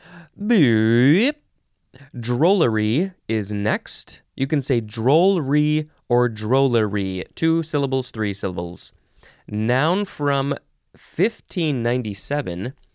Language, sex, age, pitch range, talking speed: English, male, 20-39, 100-150 Hz, 80 wpm